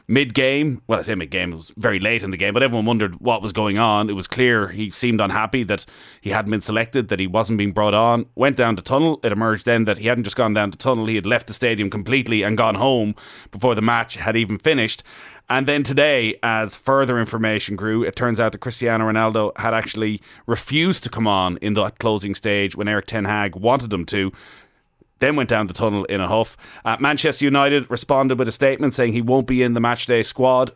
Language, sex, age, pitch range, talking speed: English, male, 30-49, 100-120 Hz, 230 wpm